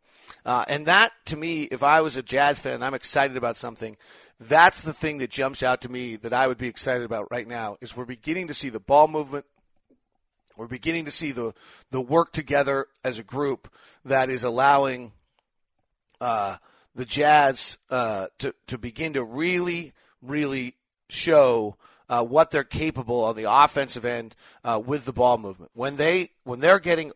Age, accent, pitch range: 40-59, American, 120-150 Hz